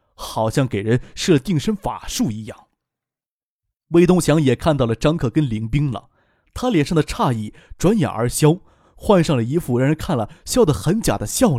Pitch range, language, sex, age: 120-165 Hz, Chinese, male, 20-39